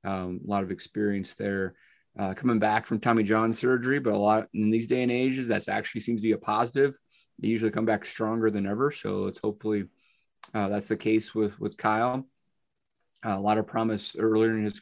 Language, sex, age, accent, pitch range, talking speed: English, male, 30-49, American, 100-115 Hz, 215 wpm